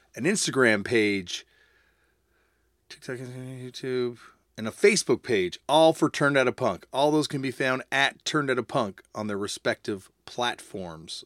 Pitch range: 105-145 Hz